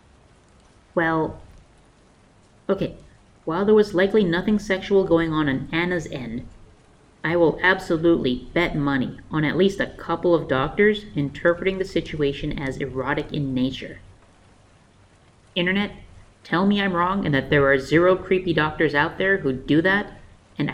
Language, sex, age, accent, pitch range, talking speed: English, female, 30-49, American, 140-190 Hz, 145 wpm